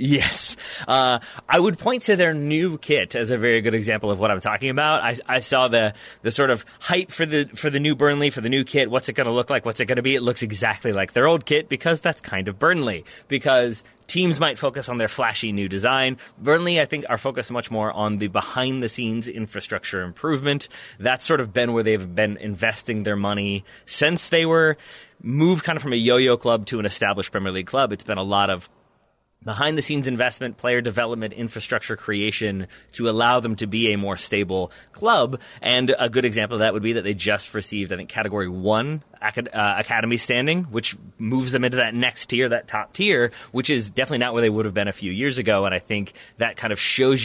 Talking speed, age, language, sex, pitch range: 220 wpm, 30-49, English, male, 105-135 Hz